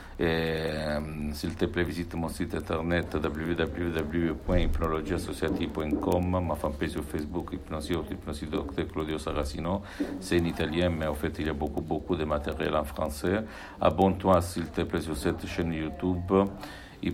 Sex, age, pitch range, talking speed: male, 60-79, 80-90 Hz, 160 wpm